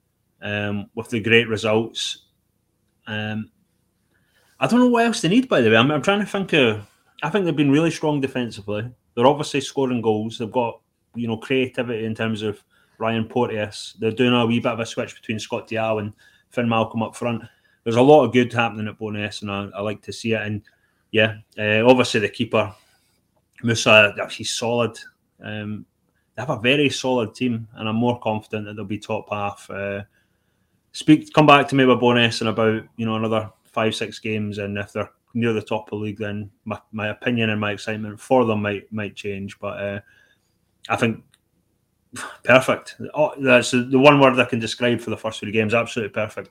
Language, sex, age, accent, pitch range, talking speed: English, male, 30-49, British, 105-125 Hz, 205 wpm